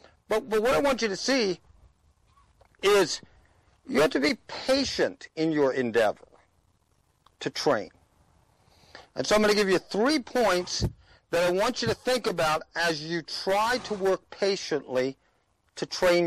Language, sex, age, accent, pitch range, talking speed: English, male, 50-69, American, 160-220 Hz, 160 wpm